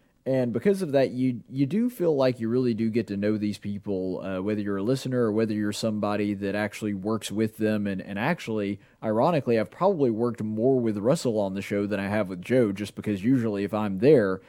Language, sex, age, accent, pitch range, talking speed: English, male, 30-49, American, 110-140 Hz, 230 wpm